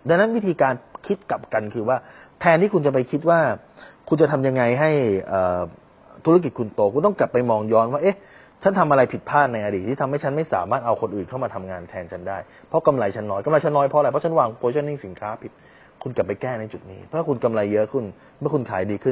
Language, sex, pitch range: Thai, male, 105-145 Hz